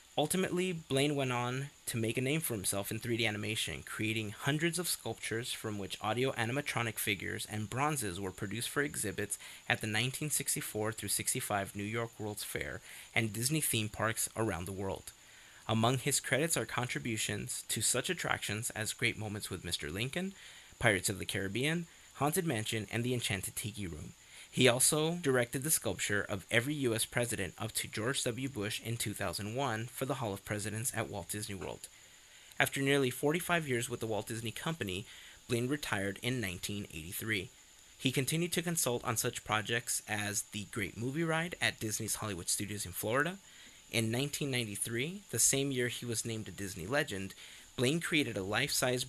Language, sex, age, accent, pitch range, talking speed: English, male, 30-49, American, 105-135 Hz, 170 wpm